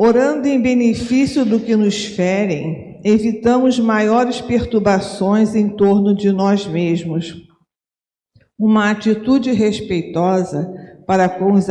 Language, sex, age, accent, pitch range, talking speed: Portuguese, female, 50-69, Brazilian, 185-225 Hz, 110 wpm